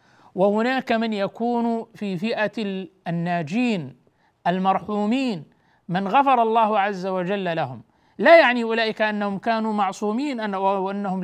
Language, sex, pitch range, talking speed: Arabic, male, 175-215 Hz, 110 wpm